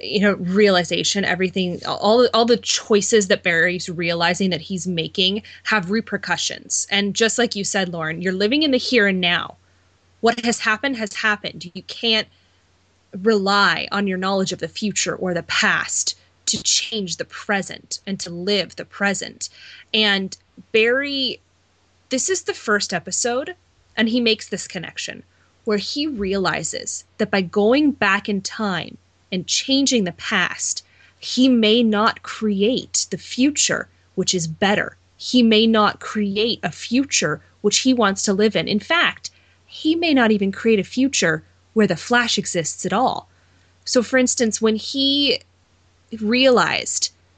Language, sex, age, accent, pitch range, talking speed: English, female, 20-39, American, 180-230 Hz, 155 wpm